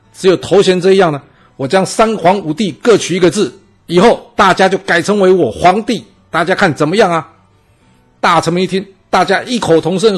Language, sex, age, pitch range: Chinese, male, 50-69, 140-190 Hz